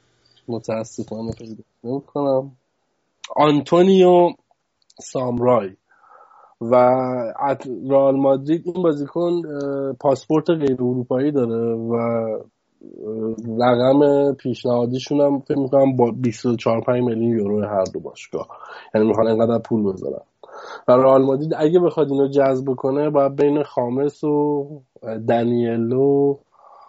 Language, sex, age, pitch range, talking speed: Persian, male, 20-39, 115-140 Hz, 100 wpm